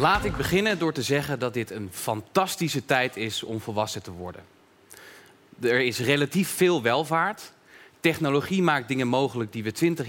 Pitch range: 120-175 Hz